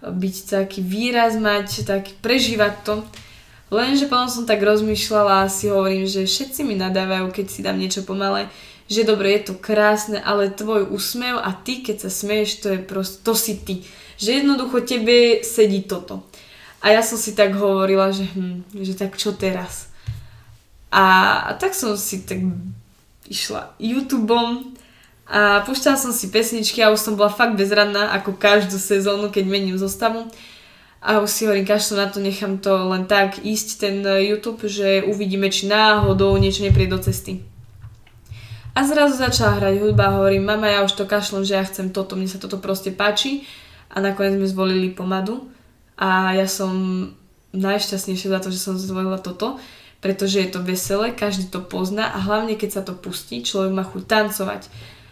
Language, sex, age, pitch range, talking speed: Czech, female, 10-29, 190-215 Hz, 175 wpm